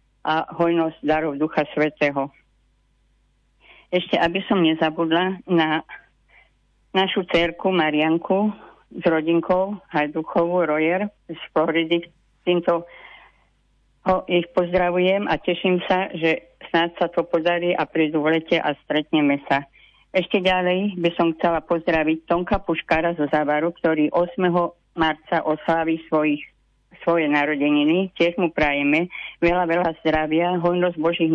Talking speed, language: 115 wpm, Slovak